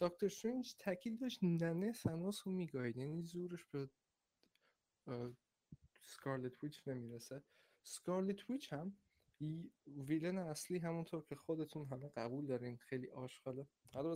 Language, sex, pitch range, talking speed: Persian, male, 135-190 Hz, 120 wpm